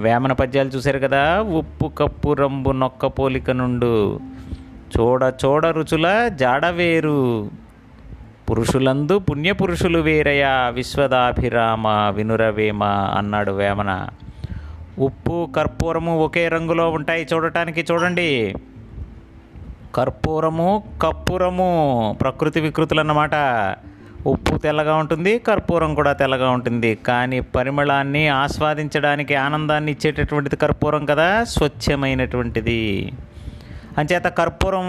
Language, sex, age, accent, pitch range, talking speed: Telugu, male, 30-49, native, 130-160 Hz, 85 wpm